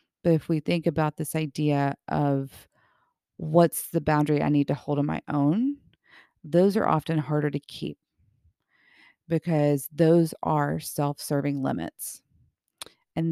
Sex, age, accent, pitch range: female, 40-59, American, 150-170 Hz